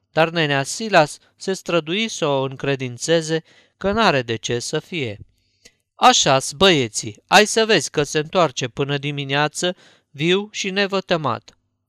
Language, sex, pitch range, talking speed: Romanian, male, 135-170 Hz, 135 wpm